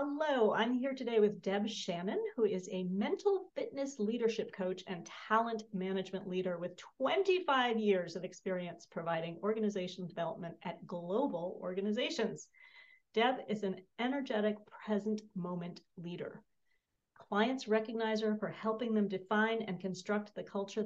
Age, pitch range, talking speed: 40-59, 185-220 Hz, 130 wpm